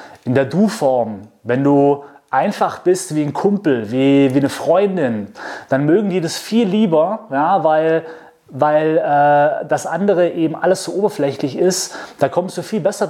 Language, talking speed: German, 165 wpm